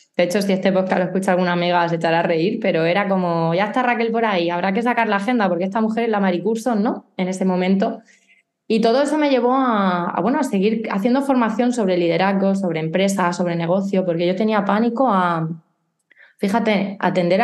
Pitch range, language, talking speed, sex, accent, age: 175-225 Hz, Spanish, 210 wpm, female, Spanish, 20-39